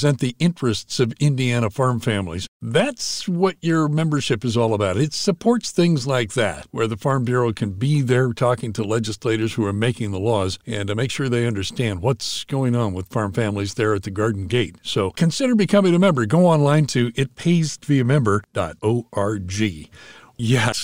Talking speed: 175 wpm